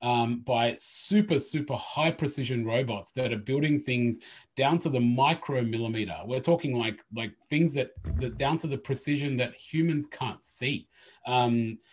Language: English